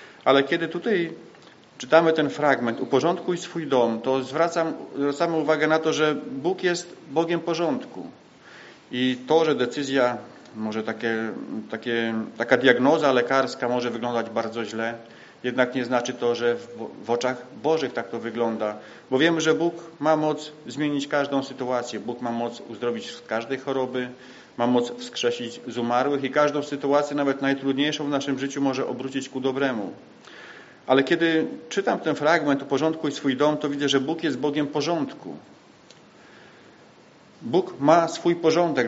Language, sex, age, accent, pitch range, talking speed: Polish, male, 40-59, native, 120-150 Hz, 155 wpm